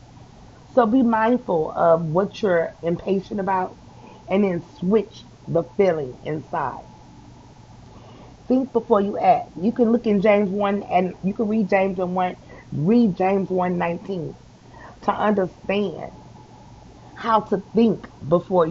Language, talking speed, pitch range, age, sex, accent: English, 130 wpm, 170-215 Hz, 30-49, female, American